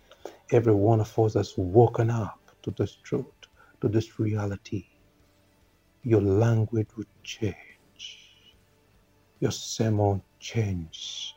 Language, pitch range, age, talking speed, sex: English, 95-110 Hz, 60-79, 105 wpm, male